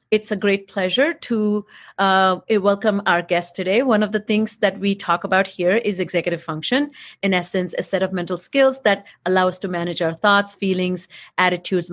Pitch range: 175-205 Hz